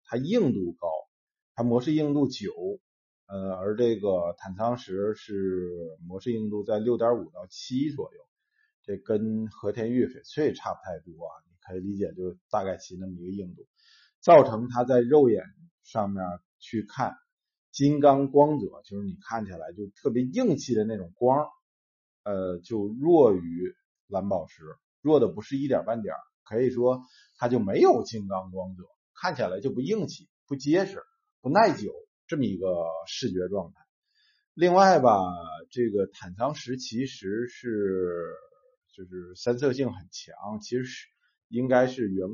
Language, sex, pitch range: Chinese, male, 100-145 Hz